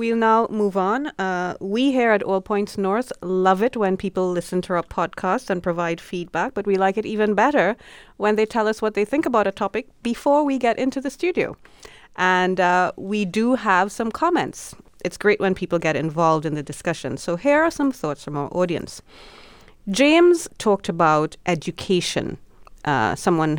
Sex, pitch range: female, 155-210 Hz